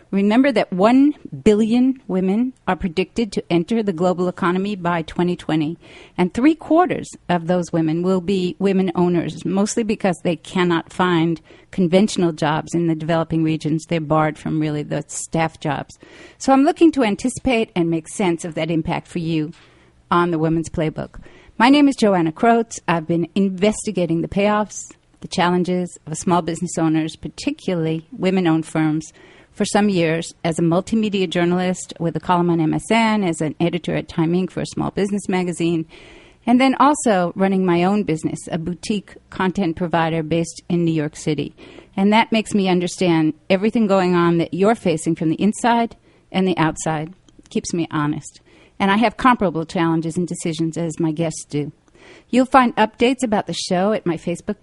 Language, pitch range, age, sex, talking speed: English, 165-205 Hz, 50-69, female, 170 wpm